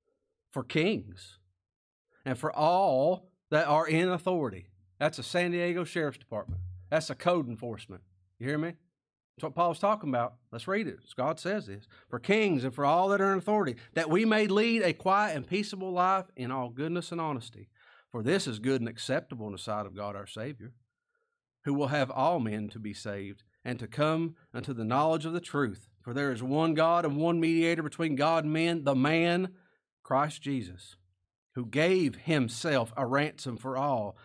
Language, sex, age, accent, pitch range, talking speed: English, male, 40-59, American, 110-160 Hz, 190 wpm